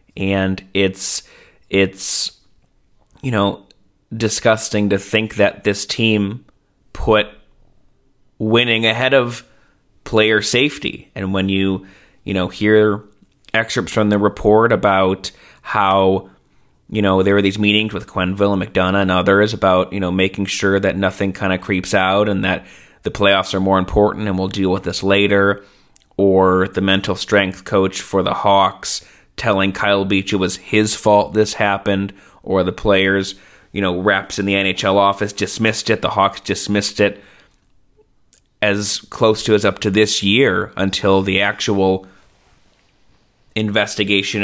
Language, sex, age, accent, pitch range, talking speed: English, male, 20-39, American, 95-105 Hz, 150 wpm